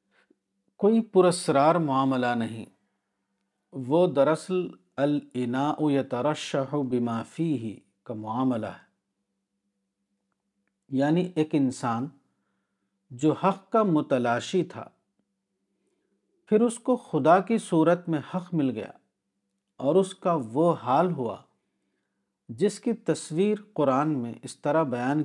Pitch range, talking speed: 105-155 Hz, 110 wpm